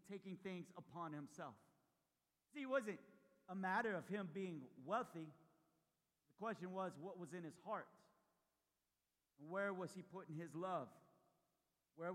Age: 50-69